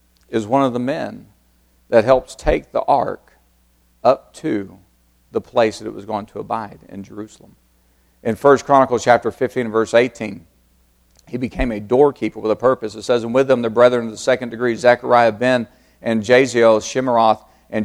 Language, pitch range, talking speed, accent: English, 90-150 Hz, 175 wpm, American